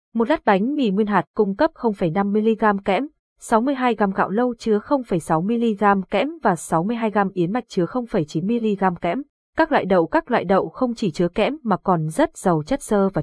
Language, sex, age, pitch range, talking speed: Vietnamese, female, 20-39, 195-240 Hz, 205 wpm